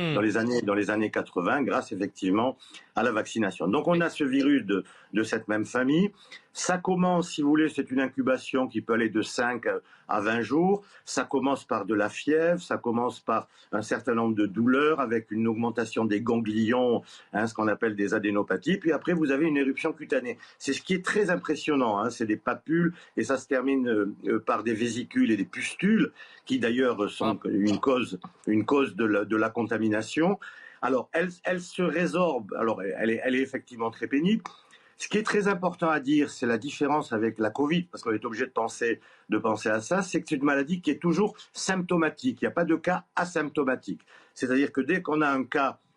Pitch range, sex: 115-170 Hz, male